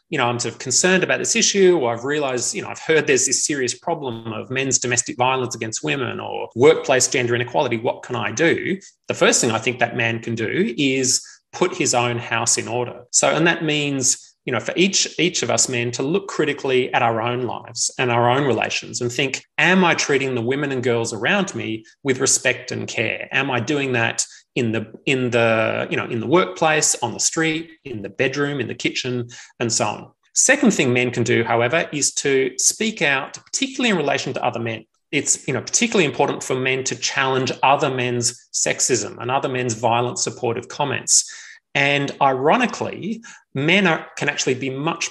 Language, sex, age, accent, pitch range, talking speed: English, male, 30-49, Australian, 120-150 Hz, 205 wpm